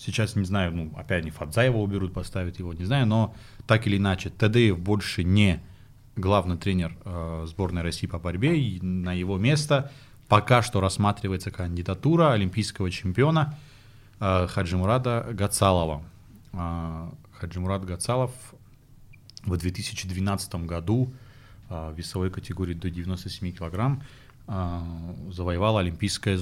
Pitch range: 90-110 Hz